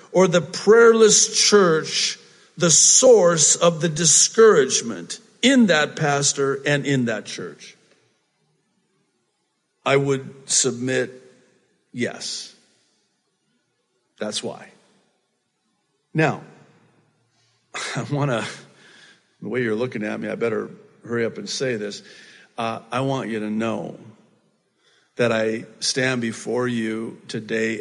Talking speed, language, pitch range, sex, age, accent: 110 wpm, English, 110-155 Hz, male, 50-69, American